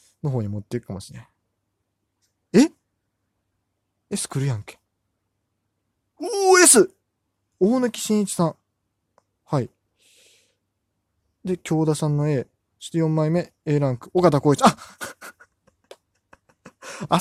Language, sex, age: Japanese, male, 20-39